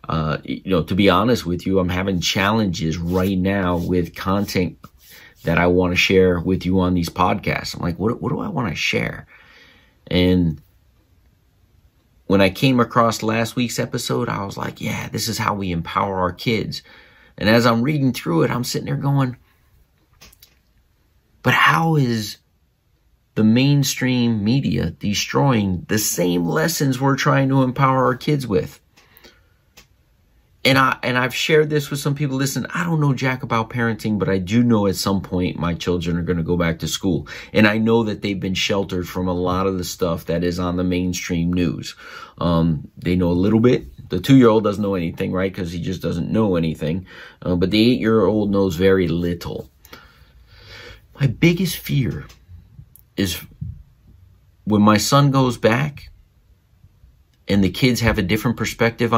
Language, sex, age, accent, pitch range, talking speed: English, male, 30-49, American, 90-120 Hz, 175 wpm